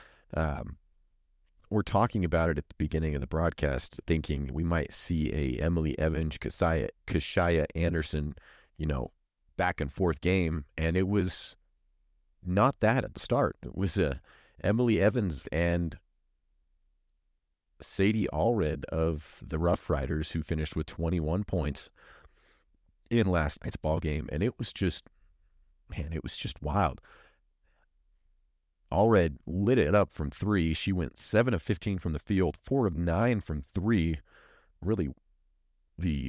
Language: English